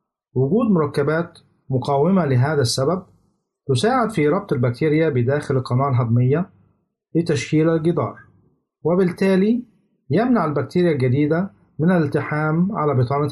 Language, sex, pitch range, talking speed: Arabic, male, 135-175 Hz, 100 wpm